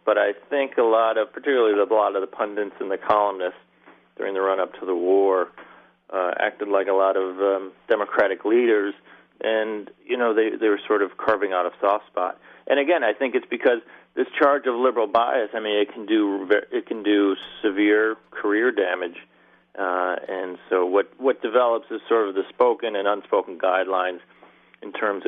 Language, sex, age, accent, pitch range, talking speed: English, male, 40-59, American, 95-125 Hz, 195 wpm